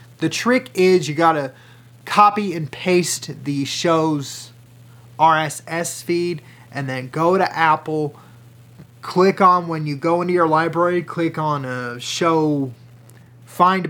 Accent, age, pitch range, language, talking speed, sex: American, 30-49, 125-175 Hz, English, 130 wpm, male